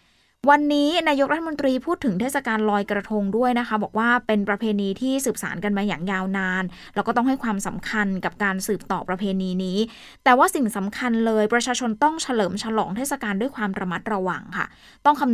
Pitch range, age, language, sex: 195-245 Hz, 20-39, Thai, female